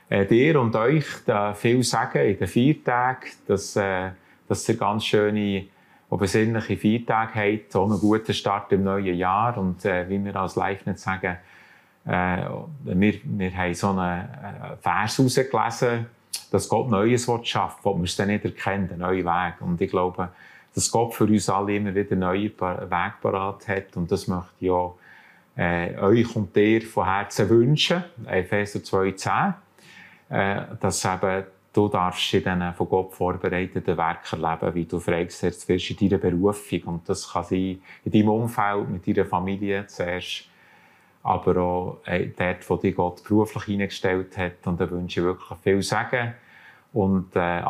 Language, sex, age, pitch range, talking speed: German, male, 30-49, 95-110 Hz, 165 wpm